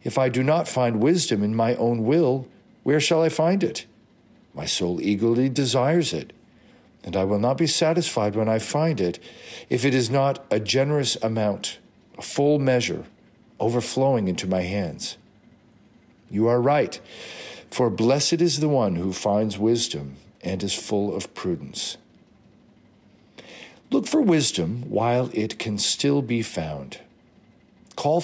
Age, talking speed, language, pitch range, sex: 50-69, 150 wpm, English, 110-150 Hz, male